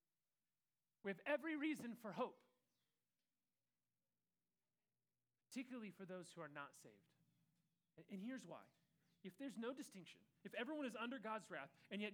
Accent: American